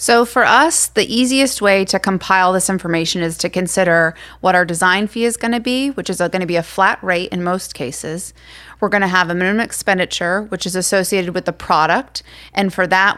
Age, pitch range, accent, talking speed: 30-49, 175-210 Hz, American, 220 wpm